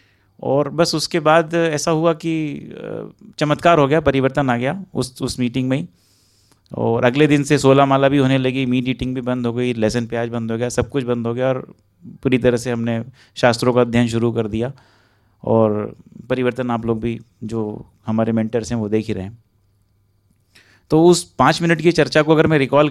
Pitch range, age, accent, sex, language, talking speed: 115-135 Hz, 30-49, native, male, Hindi, 200 wpm